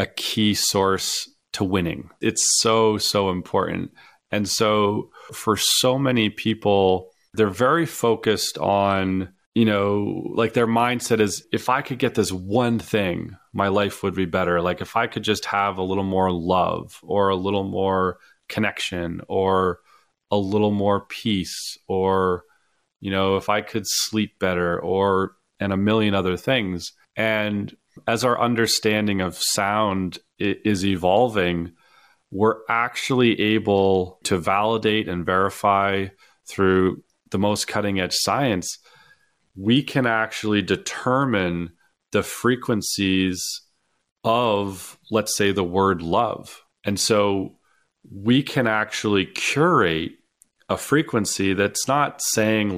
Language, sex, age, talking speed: English, male, 30-49, 130 wpm